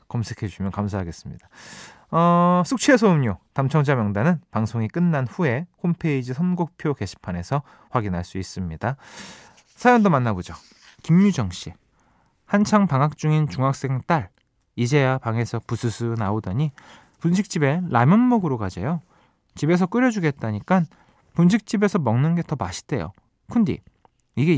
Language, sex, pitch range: Korean, male, 115-175 Hz